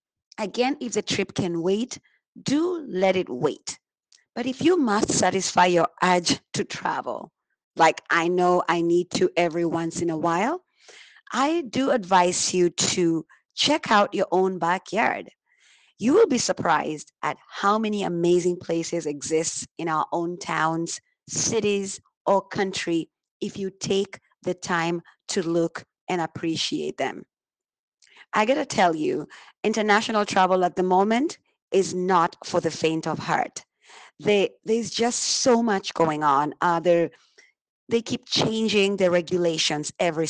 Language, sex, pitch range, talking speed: English, female, 170-210 Hz, 145 wpm